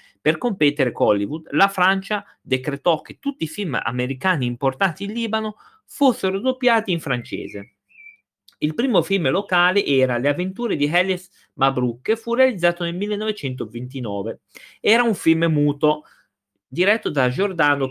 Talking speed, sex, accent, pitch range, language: 135 wpm, male, native, 125-200 Hz, Italian